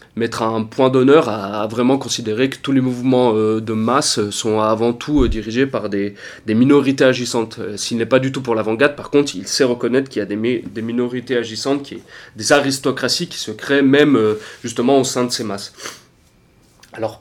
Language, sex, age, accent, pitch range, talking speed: French, male, 30-49, French, 110-135 Hz, 180 wpm